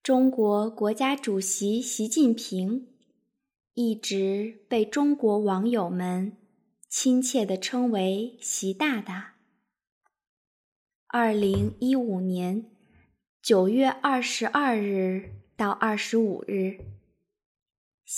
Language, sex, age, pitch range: Chinese, female, 20-39, 195-255 Hz